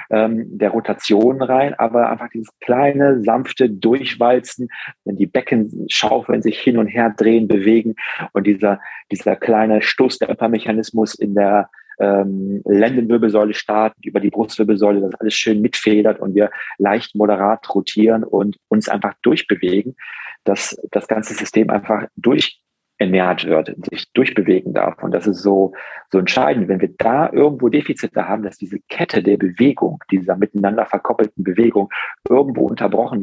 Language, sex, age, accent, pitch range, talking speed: German, male, 40-59, German, 105-115 Hz, 145 wpm